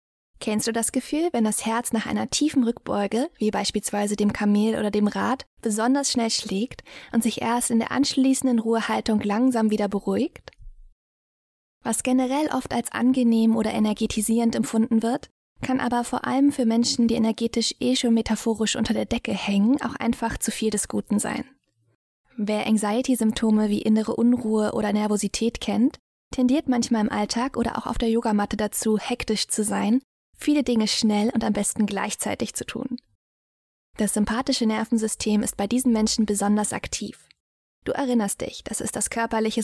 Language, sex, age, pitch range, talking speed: German, female, 20-39, 215-245 Hz, 165 wpm